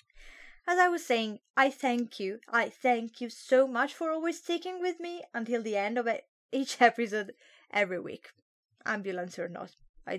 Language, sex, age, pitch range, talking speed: English, female, 20-39, 230-370 Hz, 170 wpm